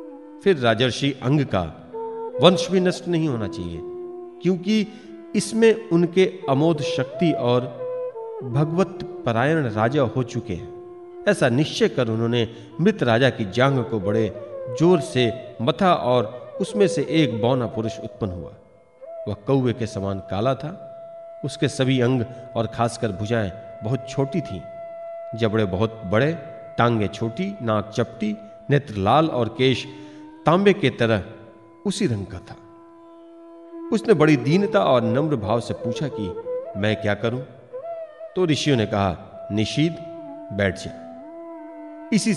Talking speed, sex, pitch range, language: 130 wpm, male, 115-190 Hz, Hindi